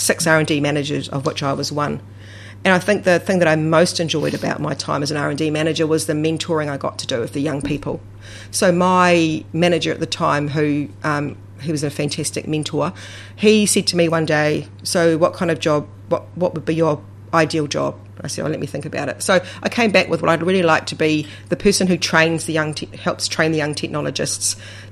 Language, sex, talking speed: English, female, 245 wpm